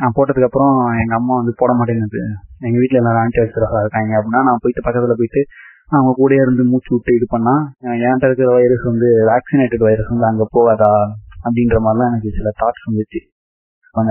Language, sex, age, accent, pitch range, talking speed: Tamil, male, 20-39, native, 110-135 Hz, 175 wpm